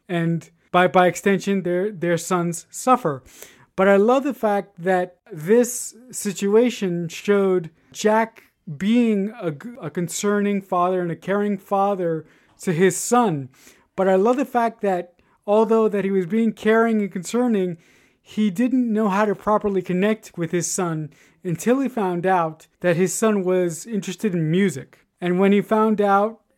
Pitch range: 180-220 Hz